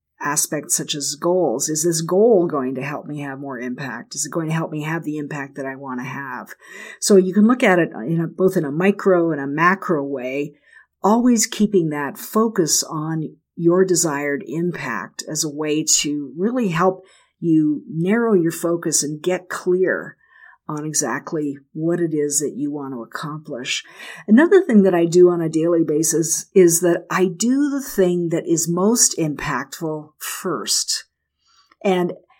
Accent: American